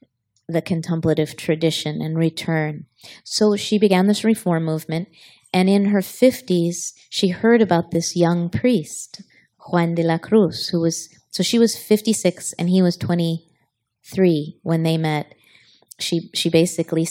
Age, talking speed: 30-49, 145 wpm